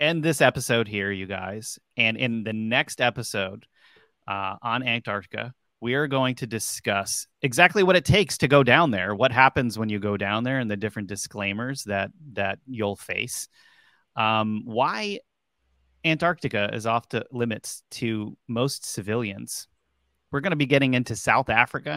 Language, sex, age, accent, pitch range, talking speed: English, male, 30-49, American, 110-145 Hz, 165 wpm